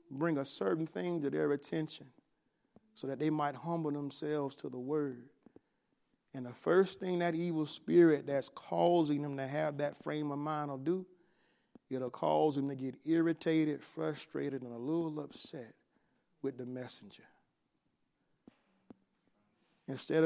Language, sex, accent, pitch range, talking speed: English, male, American, 135-165 Hz, 145 wpm